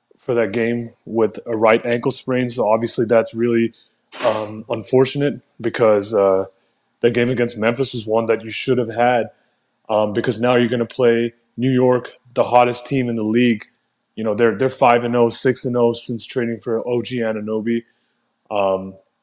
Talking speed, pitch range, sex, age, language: 180 wpm, 110-125 Hz, male, 20-39, English